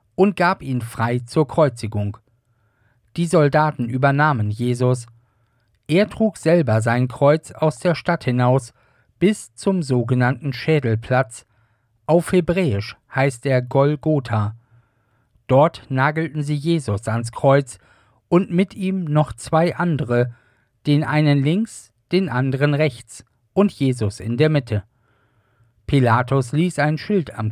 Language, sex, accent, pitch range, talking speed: German, male, German, 115-155 Hz, 120 wpm